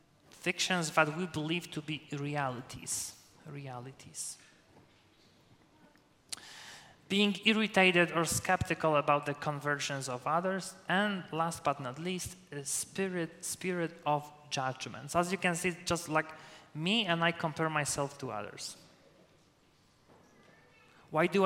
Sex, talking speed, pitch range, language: male, 115 wpm, 140-170 Hz, English